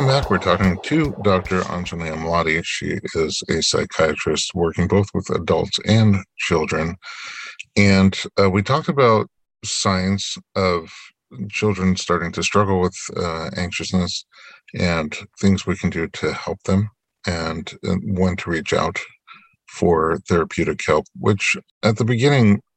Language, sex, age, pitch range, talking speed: English, male, 50-69, 90-105 Hz, 135 wpm